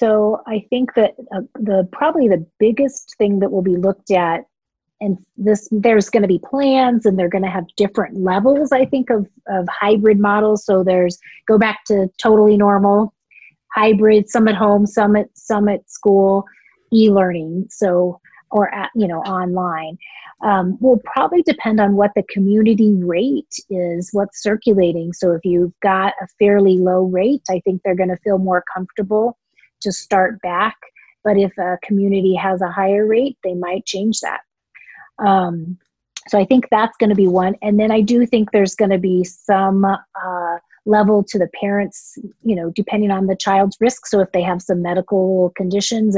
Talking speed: 180 wpm